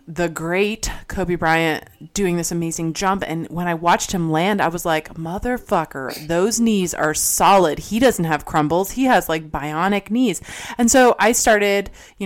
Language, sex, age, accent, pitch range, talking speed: English, female, 20-39, American, 170-215 Hz, 175 wpm